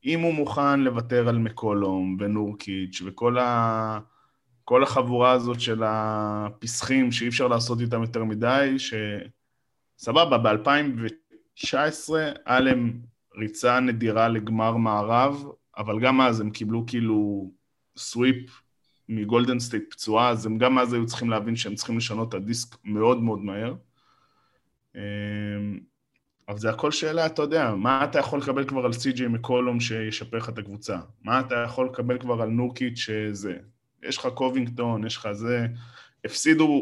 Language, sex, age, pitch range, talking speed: Hebrew, male, 20-39, 110-130 Hz, 135 wpm